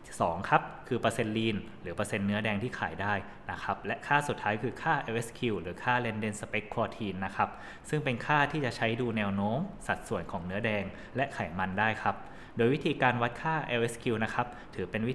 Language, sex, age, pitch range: Thai, male, 20-39, 105-125 Hz